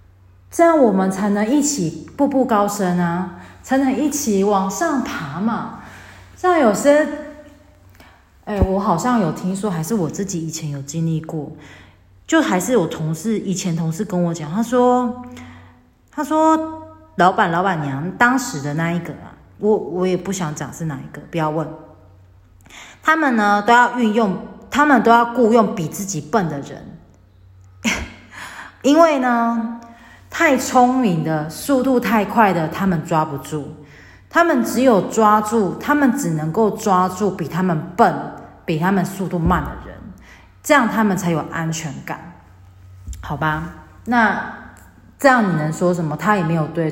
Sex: female